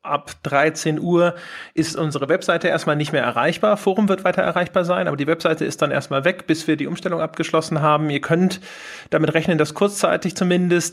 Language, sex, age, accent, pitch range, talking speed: German, male, 40-59, German, 155-185 Hz, 190 wpm